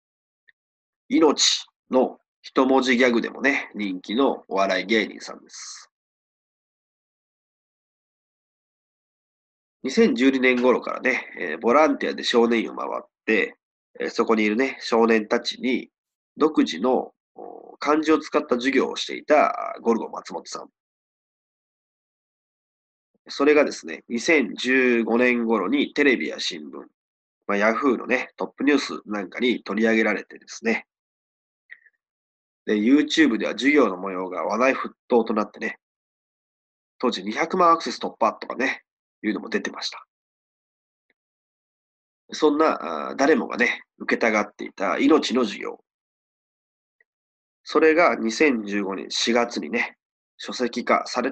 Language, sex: Japanese, male